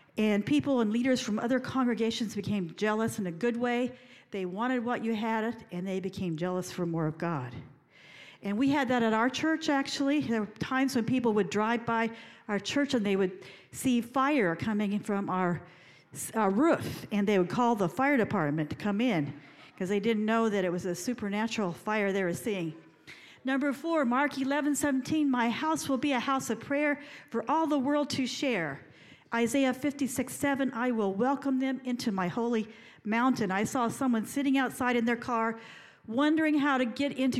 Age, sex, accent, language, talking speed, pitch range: 50-69, female, American, English, 190 wpm, 205-265 Hz